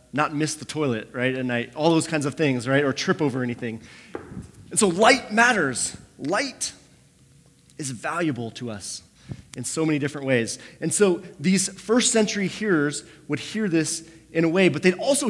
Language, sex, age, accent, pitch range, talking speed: English, male, 30-49, American, 130-180 Hz, 180 wpm